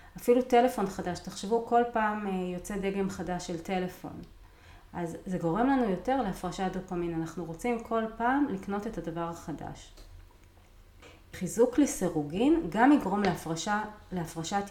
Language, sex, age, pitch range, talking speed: Hebrew, female, 30-49, 170-225 Hz, 130 wpm